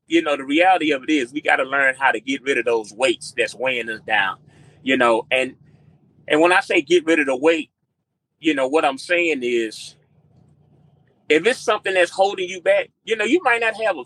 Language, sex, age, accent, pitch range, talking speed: English, male, 30-49, American, 140-200 Hz, 230 wpm